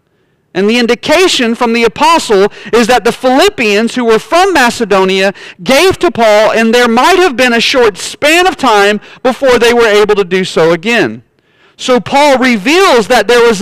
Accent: American